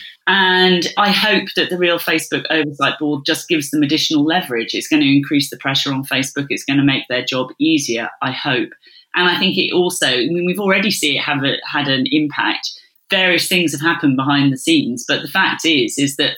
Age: 40-59